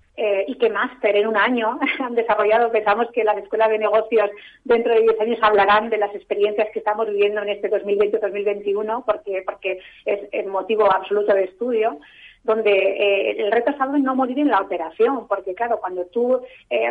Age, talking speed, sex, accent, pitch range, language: 30-49, 185 wpm, female, Spanish, 200-230 Hz, Spanish